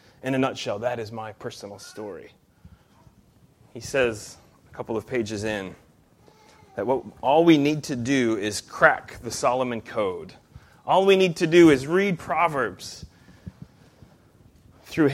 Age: 30-49